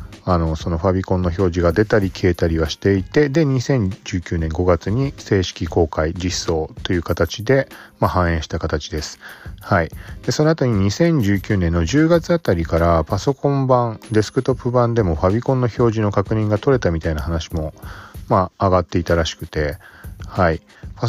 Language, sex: Japanese, male